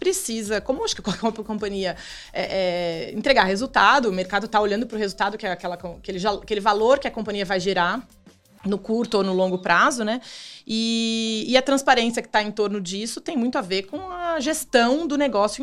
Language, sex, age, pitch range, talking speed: Portuguese, female, 20-39, 195-255 Hz, 185 wpm